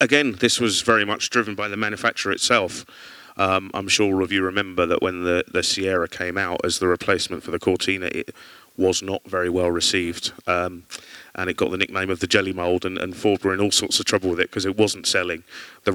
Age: 30-49